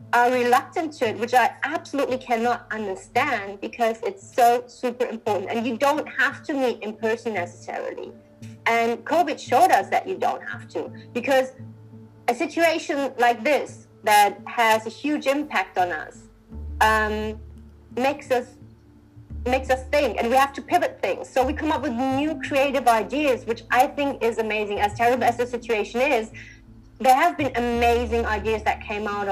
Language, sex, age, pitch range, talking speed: English, female, 30-49, 225-275 Hz, 170 wpm